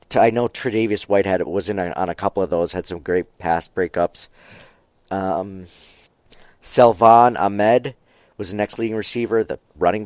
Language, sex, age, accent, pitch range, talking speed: English, male, 40-59, American, 90-115 Hz, 165 wpm